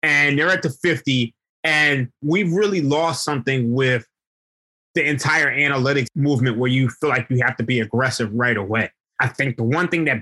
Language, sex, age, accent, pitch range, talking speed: English, male, 20-39, American, 120-155 Hz, 190 wpm